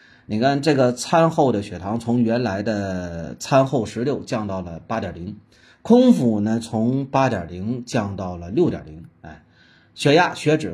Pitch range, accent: 105-145 Hz, native